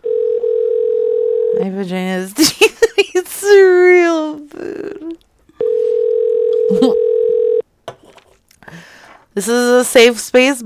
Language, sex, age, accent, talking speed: English, female, 30-49, American, 80 wpm